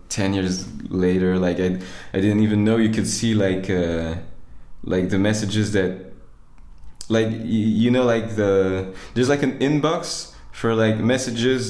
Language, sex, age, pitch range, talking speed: Danish, male, 20-39, 90-110 Hz, 160 wpm